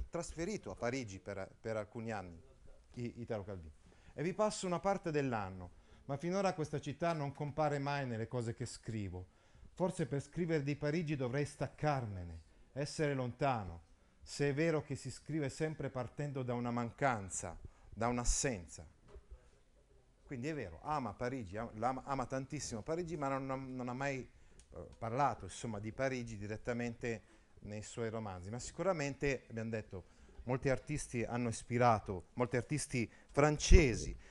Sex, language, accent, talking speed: male, Italian, native, 145 wpm